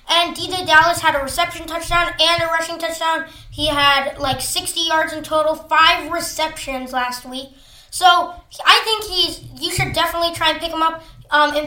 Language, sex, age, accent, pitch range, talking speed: English, female, 20-39, American, 290-340 Hz, 185 wpm